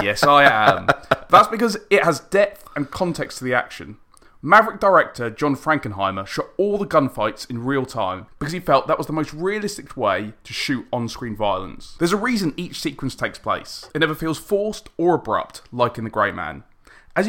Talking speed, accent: 195 wpm, British